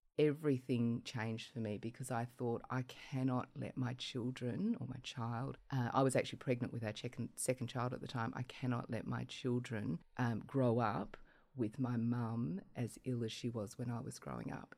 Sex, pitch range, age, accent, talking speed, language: female, 120-130 Hz, 30-49, Australian, 195 wpm, English